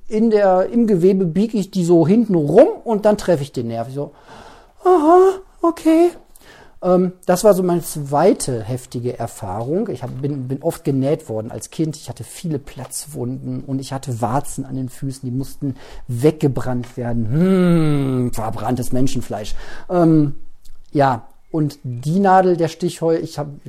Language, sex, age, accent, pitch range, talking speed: German, male, 40-59, German, 130-165 Hz, 160 wpm